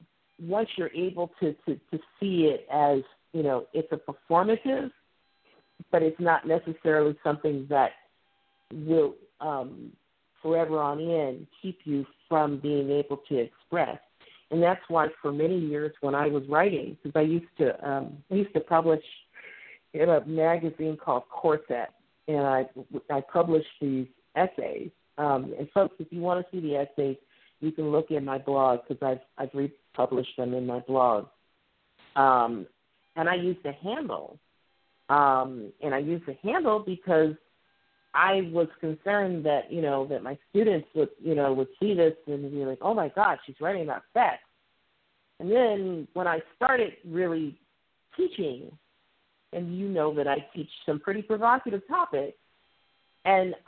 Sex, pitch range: female, 140-180 Hz